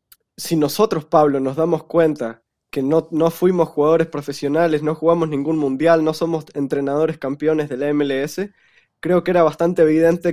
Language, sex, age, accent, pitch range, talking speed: Spanish, male, 20-39, Argentinian, 135-165 Hz, 165 wpm